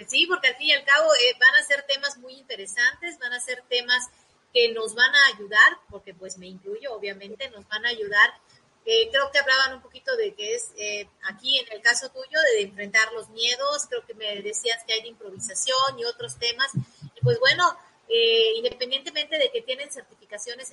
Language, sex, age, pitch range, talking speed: Spanish, female, 30-49, 215-365 Hz, 205 wpm